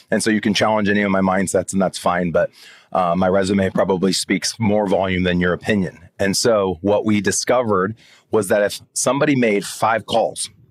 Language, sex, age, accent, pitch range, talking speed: English, male, 30-49, American, 95-120 Hz, 195 wpm